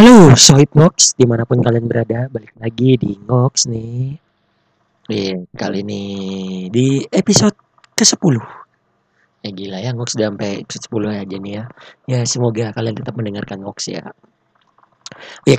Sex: male